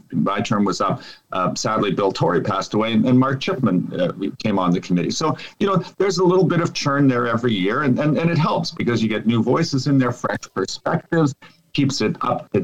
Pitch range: 95-130 Hz